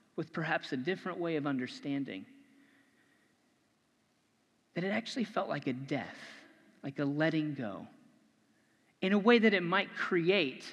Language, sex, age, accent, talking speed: English, male, 30-49, American, 140 wpm